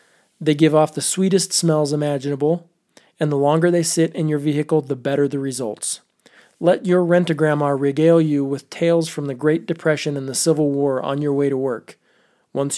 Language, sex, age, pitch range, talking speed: English, male, 20-39, 140-165 Hz, 190 wpm